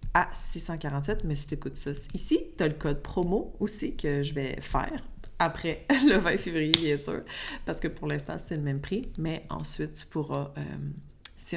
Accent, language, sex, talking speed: Canadian, French, female, 190 wpm